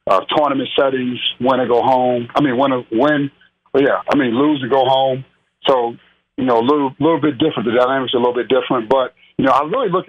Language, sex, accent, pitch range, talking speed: English, male, American, 115-135 Hz, 240 wpm